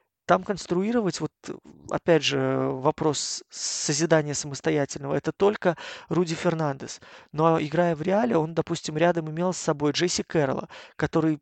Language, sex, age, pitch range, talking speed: Russian, male, 20-39, 145-170 Hz, 130 wpm